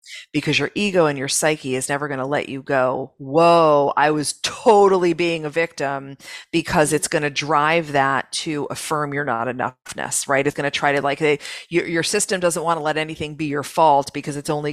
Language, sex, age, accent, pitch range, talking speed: English, female, 40-59, American, 140-170 Hz, 210 wpm